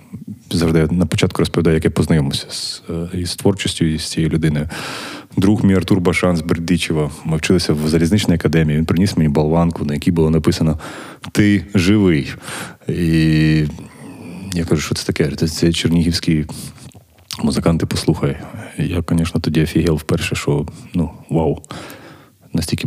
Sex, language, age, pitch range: male, Ukrainian, 20-39, 80-90 Hz